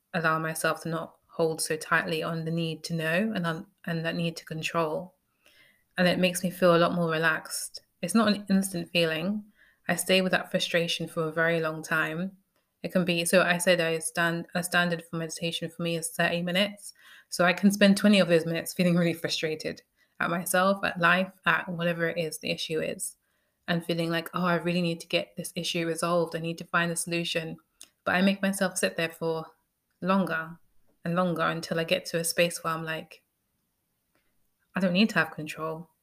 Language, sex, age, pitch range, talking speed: English, female, 20-39, 165-185 Hz, 210 wpm